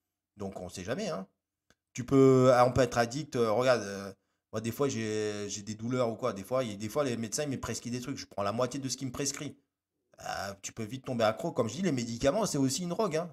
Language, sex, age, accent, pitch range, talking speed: French, male, 20-39, French, 100-135 Hz, 275 wpm